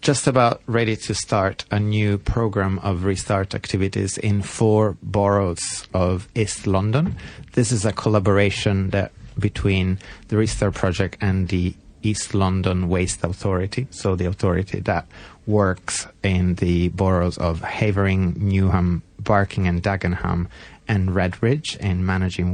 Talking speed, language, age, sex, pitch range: 135 wpm, English, 30-49, male, 90-105 Hz